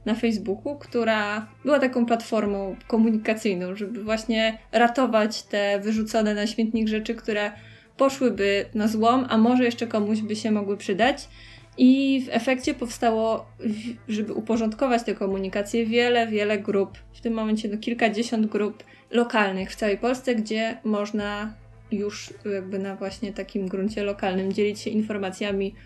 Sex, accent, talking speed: female, native, 135 wpm